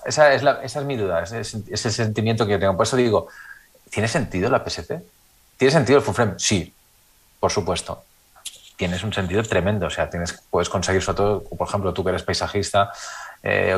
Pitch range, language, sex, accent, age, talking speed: 90-115 Hz, Spanish, male, Spanish, 30-49, 210 wpm